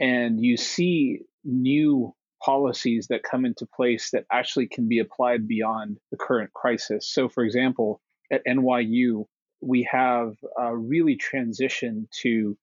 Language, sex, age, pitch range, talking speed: English, male, 30-49, 115-195 Hz, 140 wpm